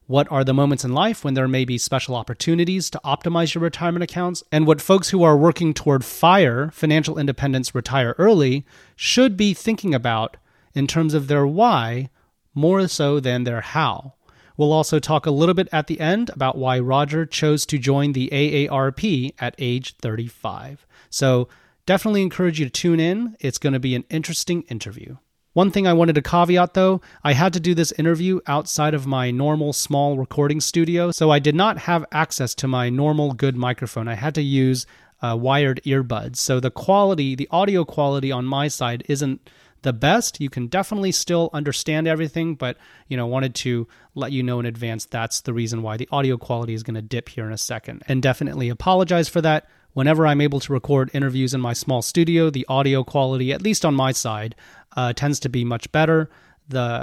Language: English